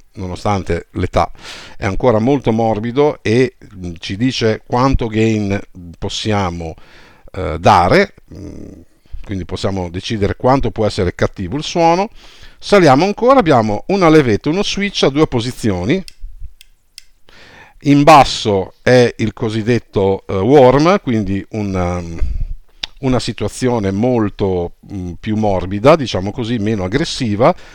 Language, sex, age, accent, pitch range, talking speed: Italian, male, 50-69, native, 105-150 Hz, 105 wpm